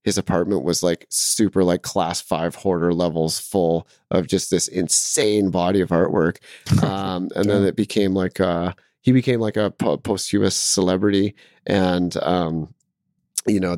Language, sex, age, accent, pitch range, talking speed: English, male, 30-49, American, 90-105 Hz, 150 wpm